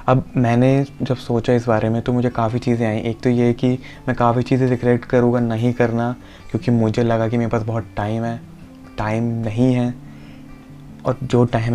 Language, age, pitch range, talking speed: Hindi, 20-39, 110-120 Hz, 195 wpm